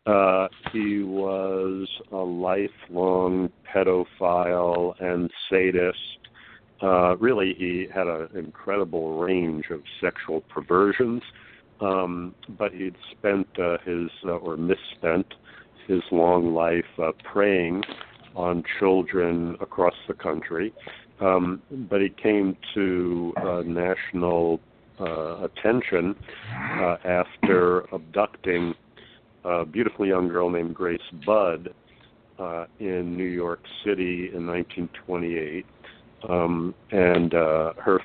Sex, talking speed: male, 105 wpm